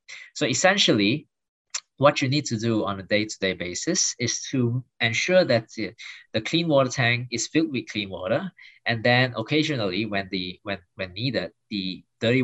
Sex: male